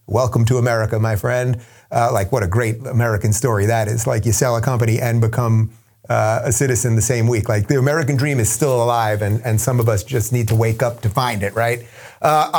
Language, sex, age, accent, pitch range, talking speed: English, male, 30-49, American, 120-150 Hz, 235 wpm